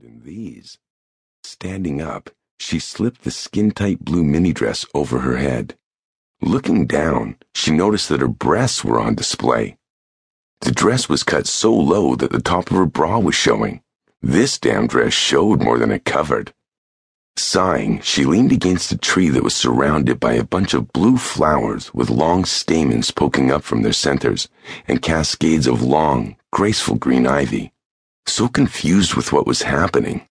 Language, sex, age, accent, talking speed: English, male, 50-69, American, 160 wpm